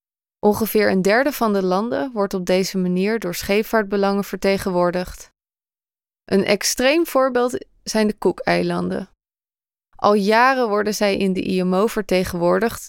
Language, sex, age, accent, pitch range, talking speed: Dutch, female, 20-39, Dutch, 190-230 Hz, 125 wpm